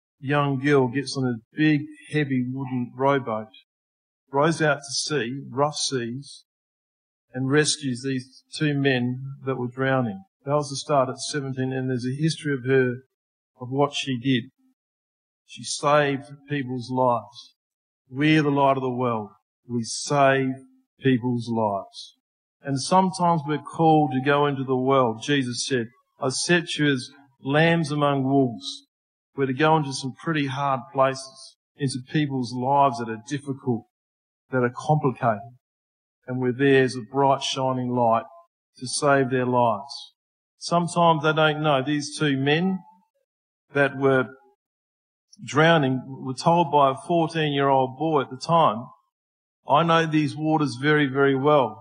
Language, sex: English, male